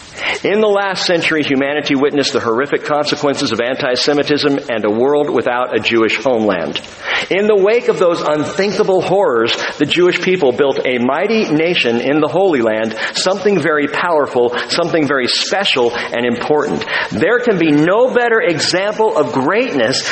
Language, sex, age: English, male, 50-69